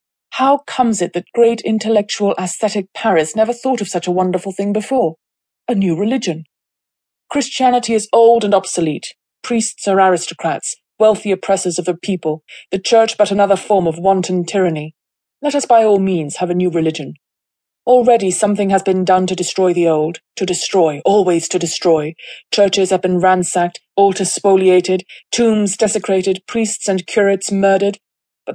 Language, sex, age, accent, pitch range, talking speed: English, female, 30-49, British, 170-210 Hz, 160 wpm